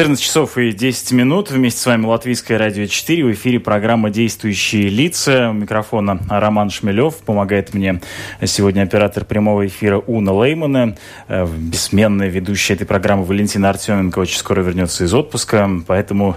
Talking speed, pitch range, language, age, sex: 145 wpm, 100-125 Hz, Russian, 20-39, male